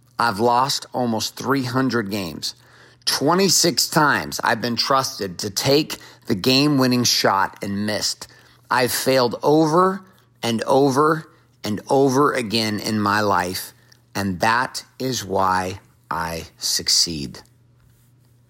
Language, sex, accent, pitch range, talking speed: English, male, American, 105-130 Hz, 110 wpm